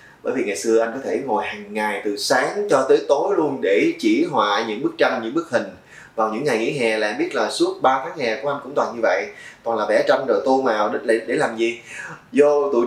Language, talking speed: Vietnamese, 260 wpm